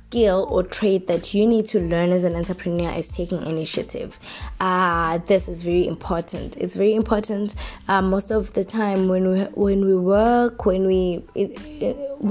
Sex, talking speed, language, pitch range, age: female, 175 wpm, English, 180-205 Hz, 20-39